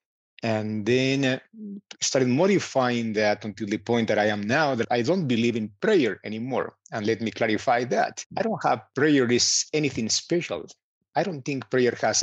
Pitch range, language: 115-145 Hz, English